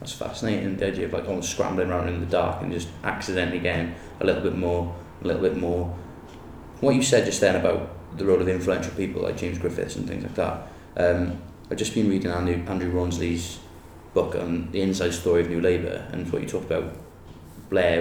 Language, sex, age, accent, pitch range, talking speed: English, male, 20-39, British, 85-95 Hz, 215 wpm